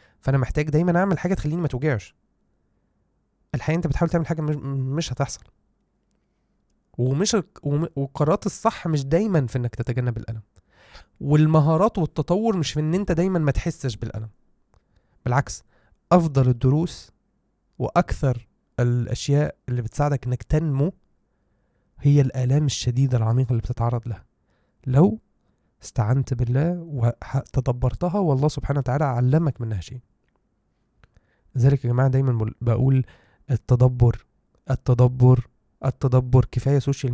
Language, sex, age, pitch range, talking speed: Arabic, male, 20-39, 120-145 Hz, 115 wpm